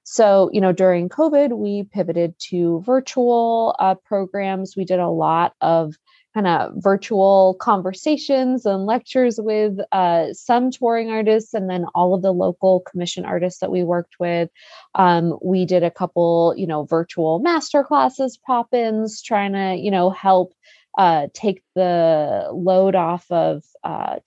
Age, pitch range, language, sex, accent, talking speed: 20-39, 175-210 Hz, English, female, American, 150 wpm